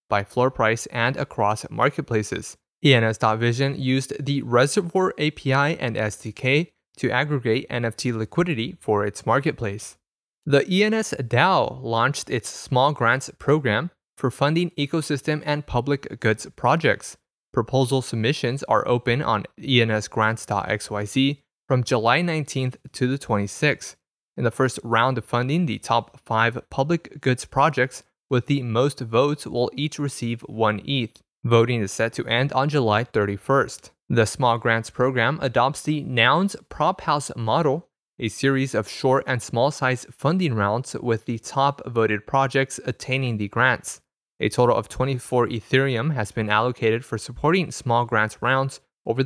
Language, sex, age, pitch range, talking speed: English, male, 20-39, 115-140 Hz, 140 wpm